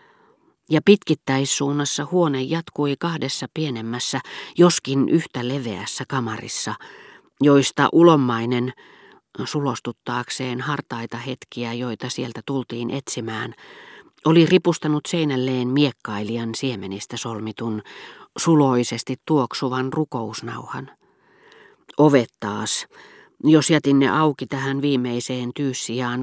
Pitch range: 120-150 Hz